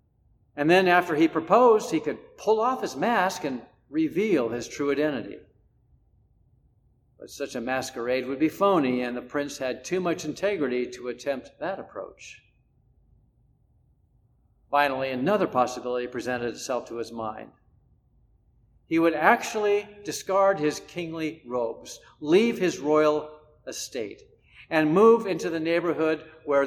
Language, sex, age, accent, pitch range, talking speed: English, male, 50-69, American, 130-185 Hz, 135 wpm